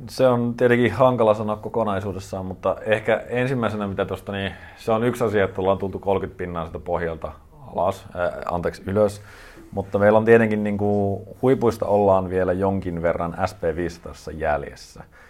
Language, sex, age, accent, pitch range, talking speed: Finnish, male, 30-49, native, 80-100 Hz, 155 wpm